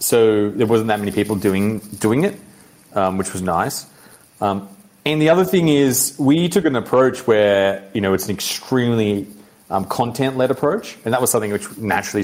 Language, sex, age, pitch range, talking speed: English, male, 30-49, 100-130 Hz, 185 wpm